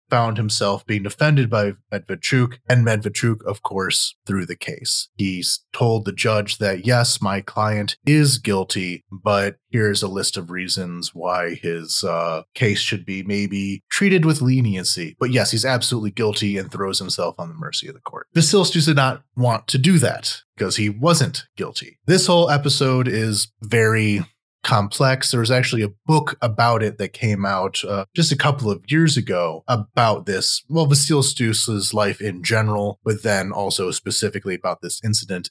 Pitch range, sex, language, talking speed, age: 100-125 Hz, male, English, 170 wpm, 30-49